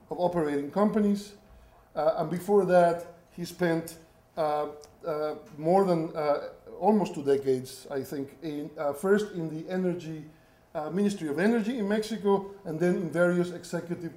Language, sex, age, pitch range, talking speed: English, male, 50-69, 140-175 Hz, 155 wpm